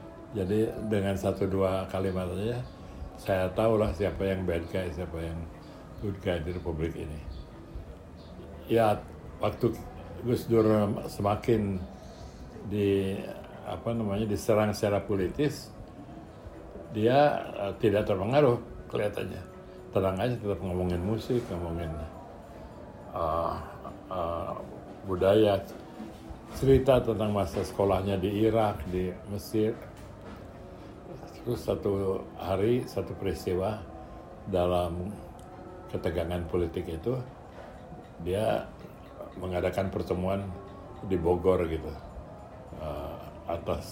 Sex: male